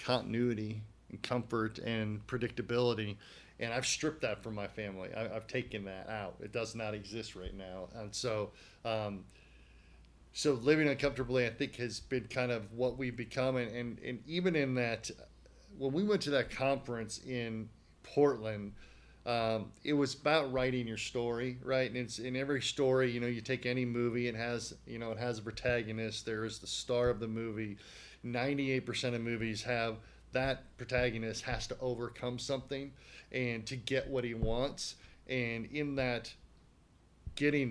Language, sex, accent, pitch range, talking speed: English, male, American, 110-130 Hz, 165 wpm